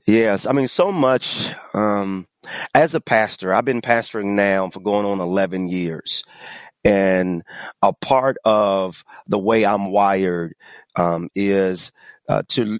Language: English